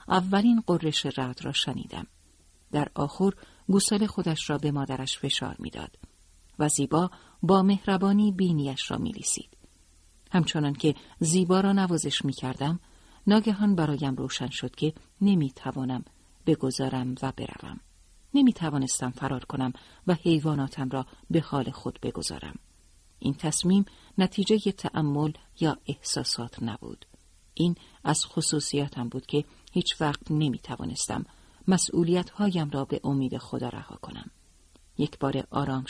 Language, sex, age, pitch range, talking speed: Persian, female, 50-69, 125-175 Hz, 125 wpm